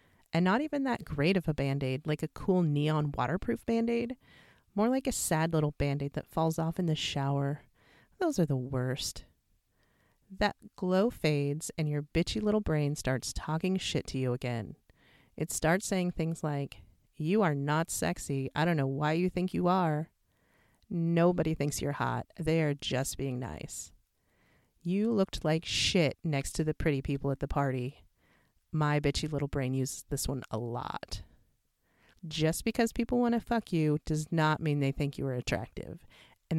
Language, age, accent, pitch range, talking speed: English, 30-49, American, 140-180 Hz, 175 wpm